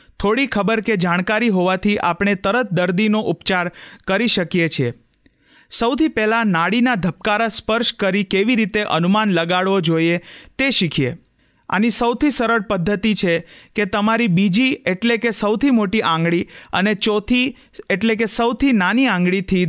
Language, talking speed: Gujarati, 115 wpm